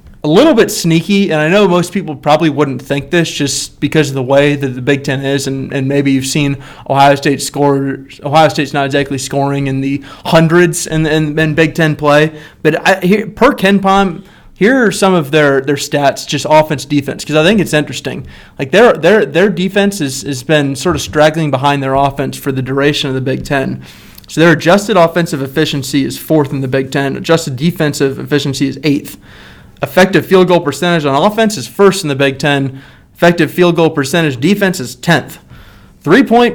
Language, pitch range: English, 140-175 Hz